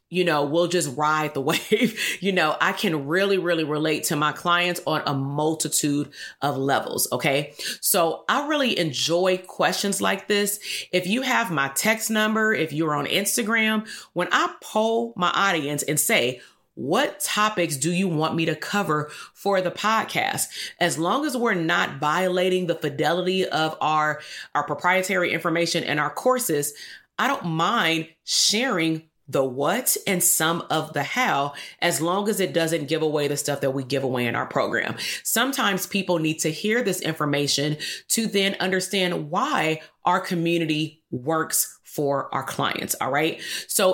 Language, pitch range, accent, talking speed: English, 150-190 Hz, American, 165 wpm